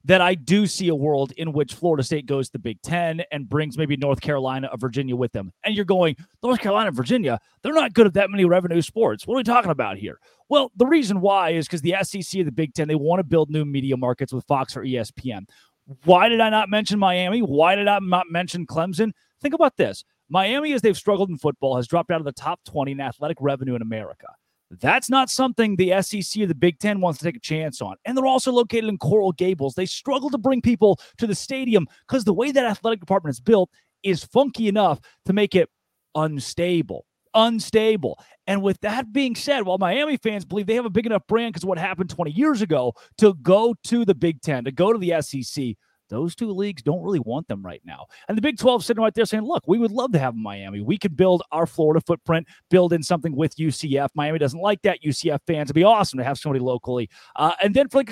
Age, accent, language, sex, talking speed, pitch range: 30-49, American, English, male, 240 wpm, 150-215 Hz